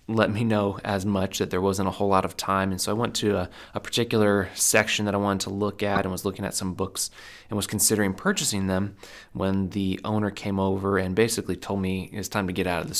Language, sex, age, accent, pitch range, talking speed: English, male, 20-39, American, 95-105 Hz, 255 wpm